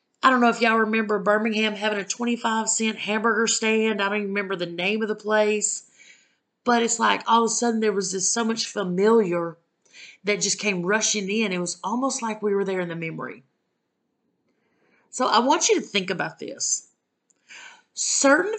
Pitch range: 205-260 Hz